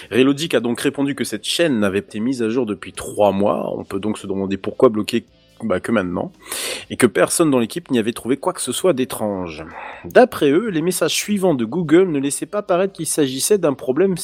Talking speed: 225 wpm